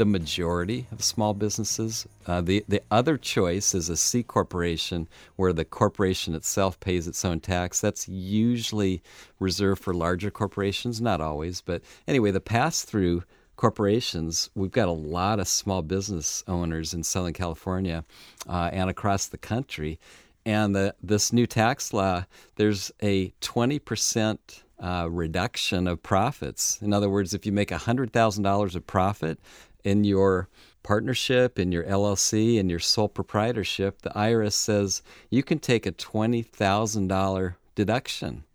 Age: 50-69